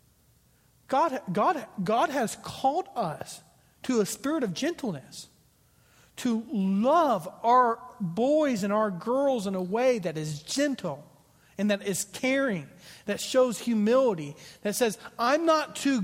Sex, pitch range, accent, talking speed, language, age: male, 160-235 Hz, American, 130 wpm, English, 40-59